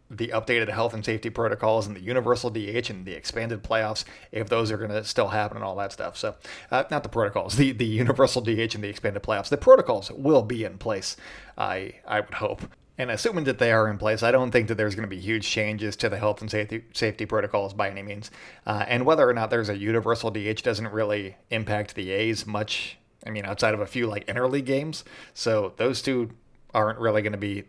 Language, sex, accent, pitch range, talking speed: English, male, American, 105-120 Hz, 230 wpm